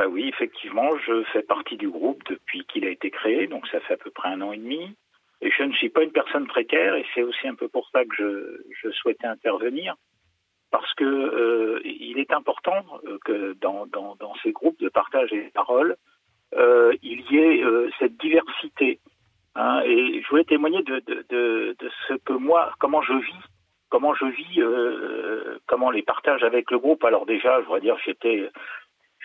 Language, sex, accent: French, male, French